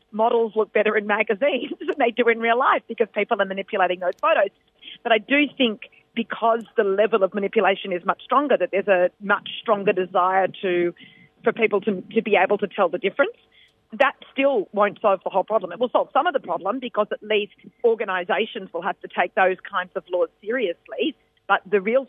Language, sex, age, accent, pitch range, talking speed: English, female, 40-59, Australian, 190-235 Hz, 205 wpm